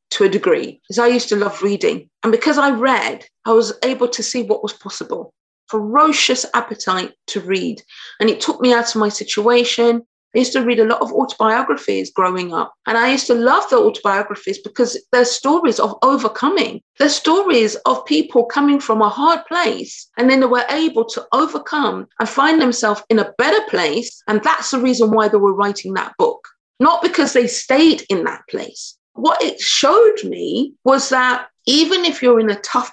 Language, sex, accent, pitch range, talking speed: English, female, British, 205-265 Hz, 195 wpm